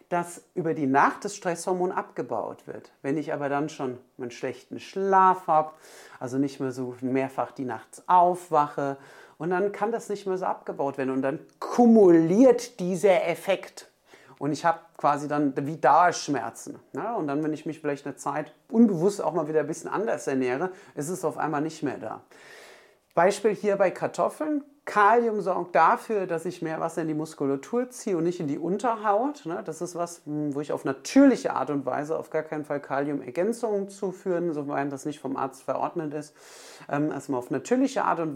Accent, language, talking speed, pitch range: German, German, 185 wpm, 140-185 Hz